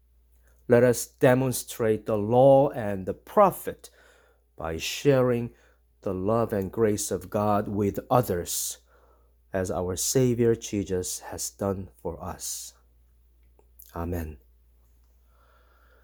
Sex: male